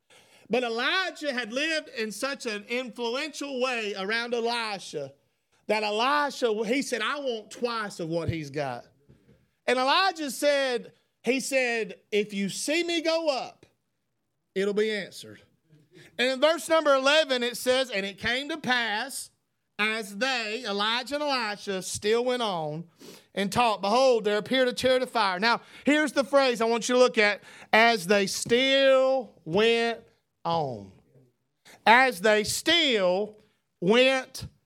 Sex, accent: male, American